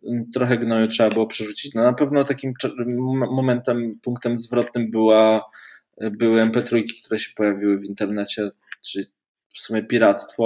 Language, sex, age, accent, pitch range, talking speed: Polish, male, 20-39, native, 110-130 Hz, 140 wpm